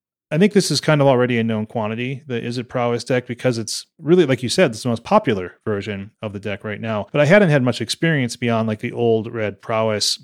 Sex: male